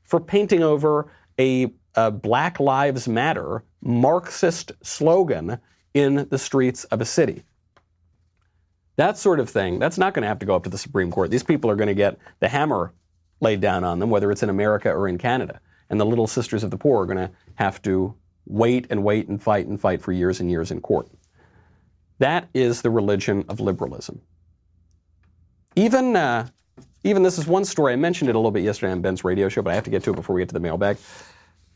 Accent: American